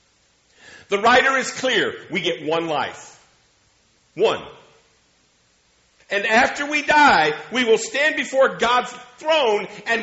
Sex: male